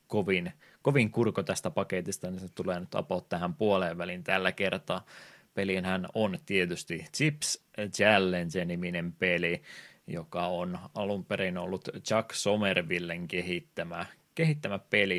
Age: 20-39